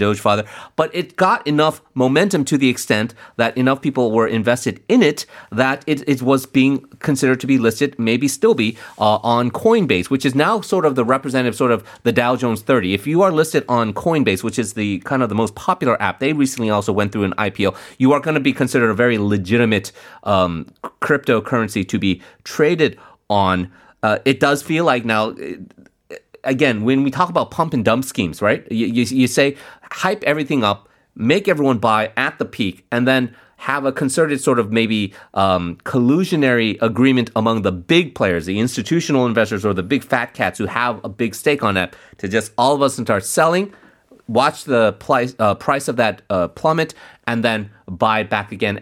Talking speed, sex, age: 200 wpm, male, 30-49